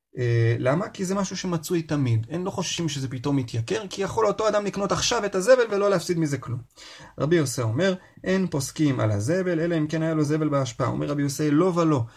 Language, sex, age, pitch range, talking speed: Hebrew, male, 30-49, 115-160 Hz, 215 wpm